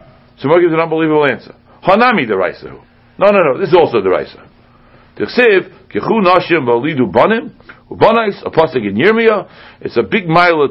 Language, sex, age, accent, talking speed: English, male, 60-79, American, 160 wpm